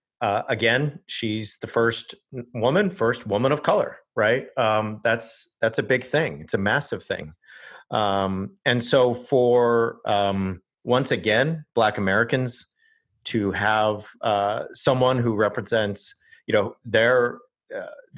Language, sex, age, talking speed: English, male, 40-59, 130 wpm